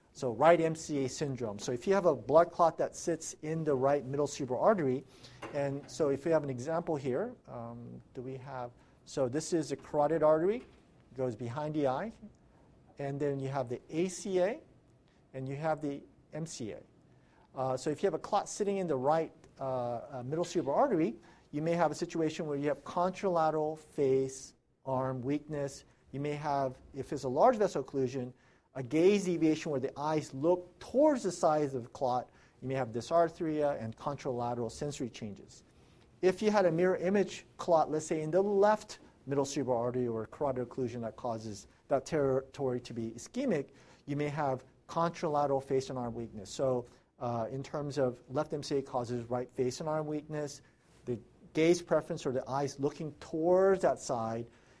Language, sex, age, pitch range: English, male, 50-69, 130-160 Hz